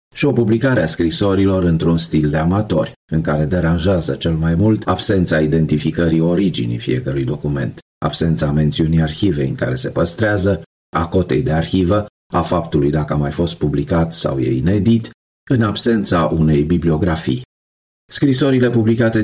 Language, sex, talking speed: Romanian, male, 145 wpm